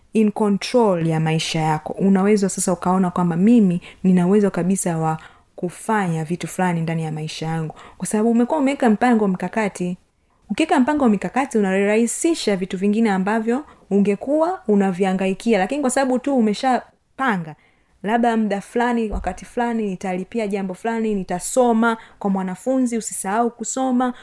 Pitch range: 185-240 Hz